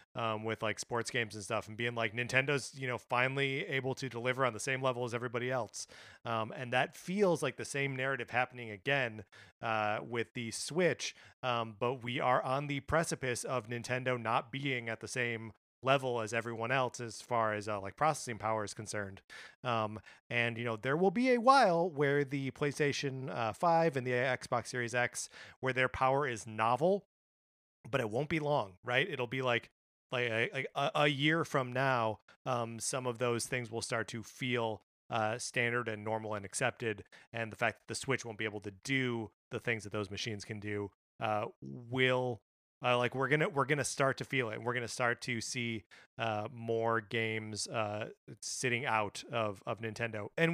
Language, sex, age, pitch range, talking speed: English, male, 30-49, 110-135 Hz, 200 wpm